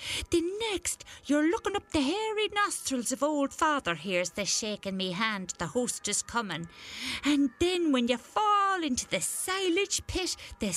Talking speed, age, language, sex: 160 wpm, 50-69, English, female